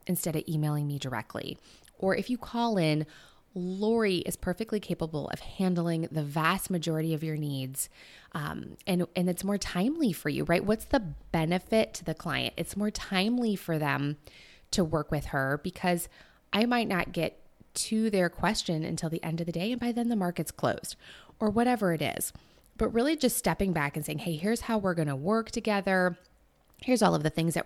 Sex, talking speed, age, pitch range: female, 195 wpm, 20-39, 160-210 Hz